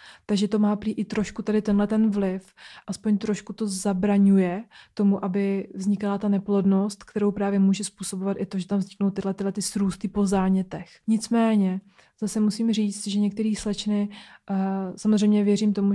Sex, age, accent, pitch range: female, 20-39, native, 195-210 Hz